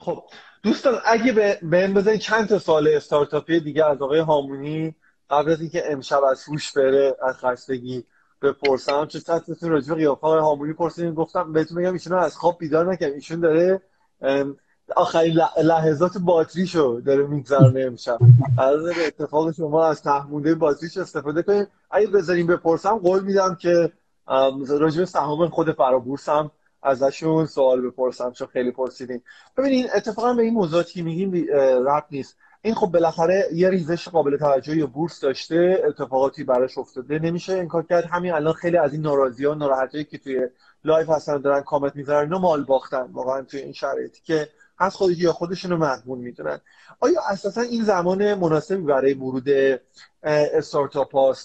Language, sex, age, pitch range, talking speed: Persian, male, 20-39, 140-175 Hz, 150 wpm